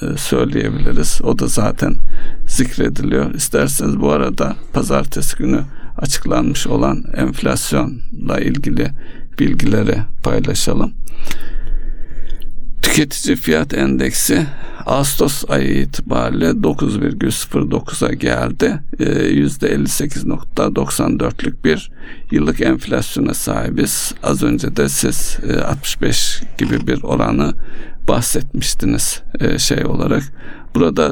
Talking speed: 85 wpm